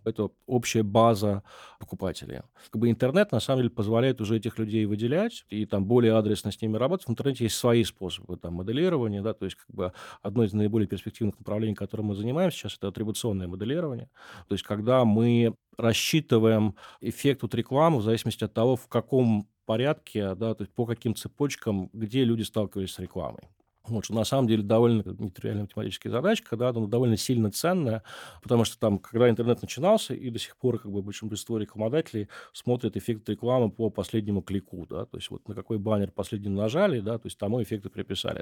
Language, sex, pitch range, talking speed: Russian, male, 100-120 Hz, 170 wpm